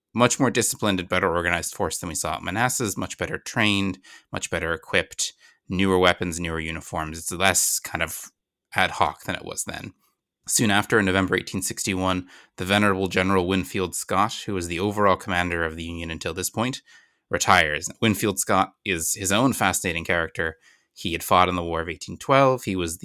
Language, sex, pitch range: English, male, 85-100 Hz